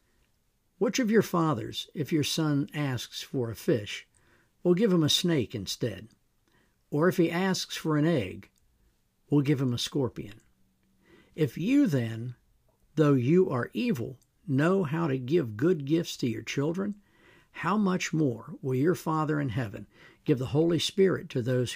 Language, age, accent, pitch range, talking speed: English, 60-79, American, 120-165 Hz, 165 wpm